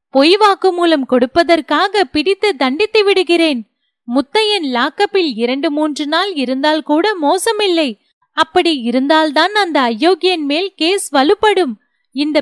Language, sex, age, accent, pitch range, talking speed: Tamil, female, 30-49, native, 280-370 Hz, 120 wpm